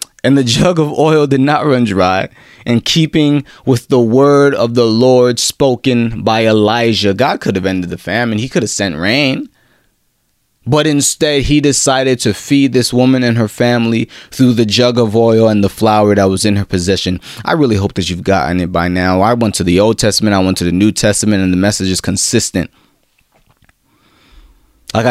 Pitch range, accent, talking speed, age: 115-150 Hz, American, 195 wpm, 30-49